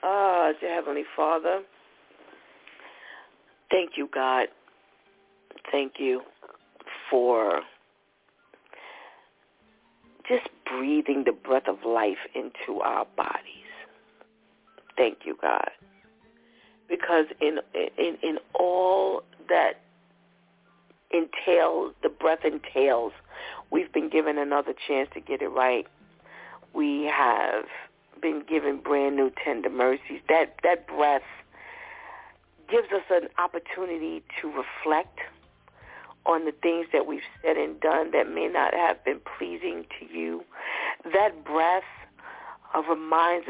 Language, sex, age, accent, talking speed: English, female, 50-69, American, 110 wpm